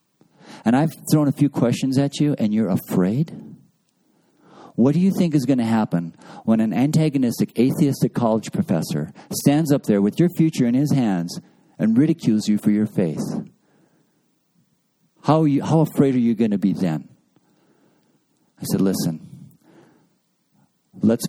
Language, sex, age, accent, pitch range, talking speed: English, male, 50-69, American, 105-150 Hz, 150 wpm